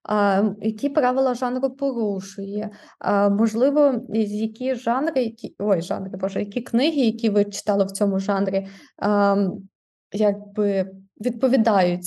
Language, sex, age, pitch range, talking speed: Ukrainian, female, 20-39, 205-245 Hz, 125 wpm